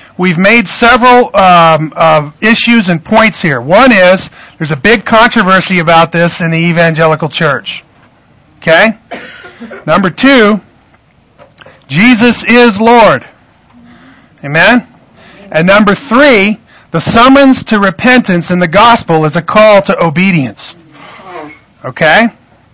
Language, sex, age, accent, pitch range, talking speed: English, male, 50-69, American, 165-225 Hz, 115 wpm